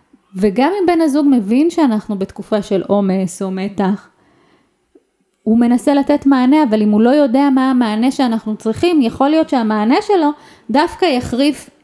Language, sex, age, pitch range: English, female, 20-39, 215-275 Hz